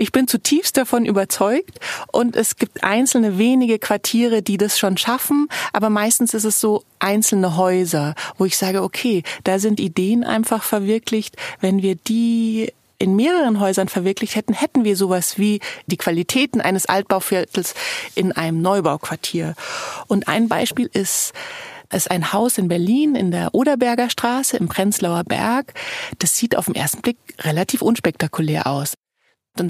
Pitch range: 185-245 Hz